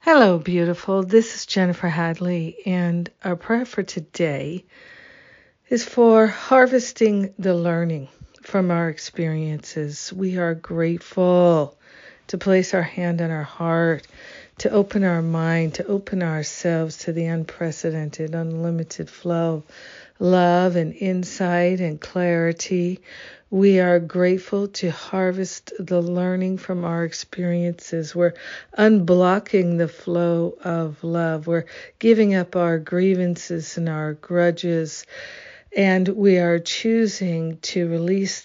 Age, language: 50-69, English